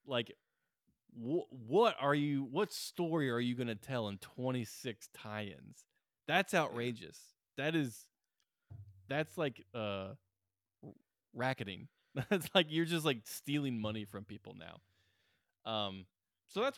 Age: 20-39